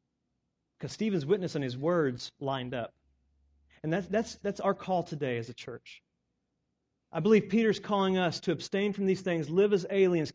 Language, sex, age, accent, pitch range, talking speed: English, male, 40-59, American, 135-185 Hz, 180 wpm